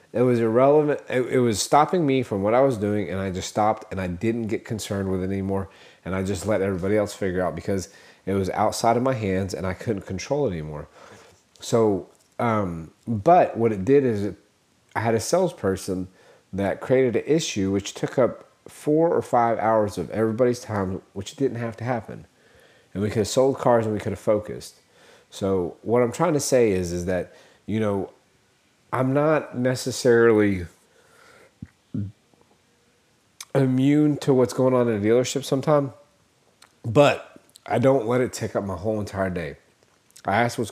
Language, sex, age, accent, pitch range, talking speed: English, male, 30-49, American, 100-130 Hz, 185 wpm